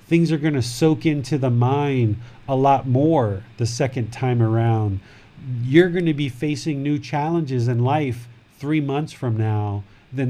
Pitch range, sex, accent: 115-135 Hz, male, American